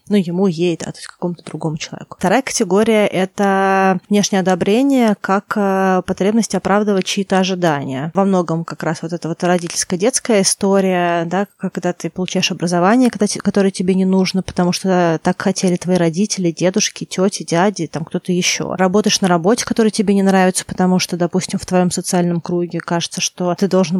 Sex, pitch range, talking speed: female, 175-200 Hz, 175 wpm